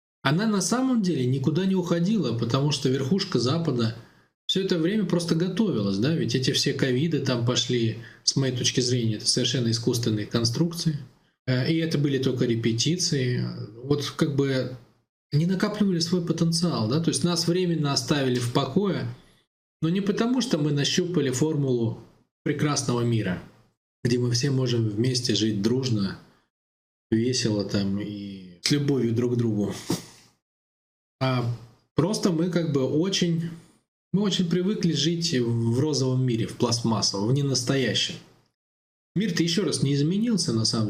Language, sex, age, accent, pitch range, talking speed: Russian, male, 20-39, native, 115-165 Hz, 145 wpm